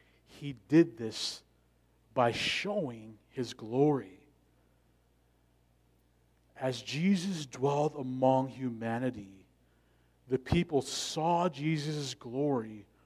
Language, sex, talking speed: English, male, 80 wpm